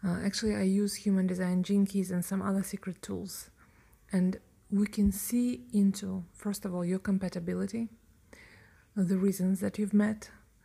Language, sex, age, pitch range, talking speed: English, female, 30-49, 185-205 Hz, 160 wpm